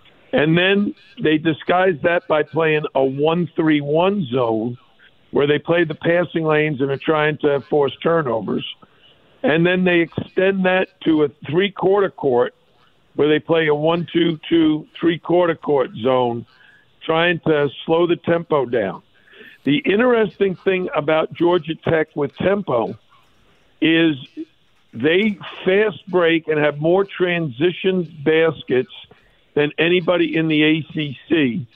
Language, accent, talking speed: English, American, 140 wpm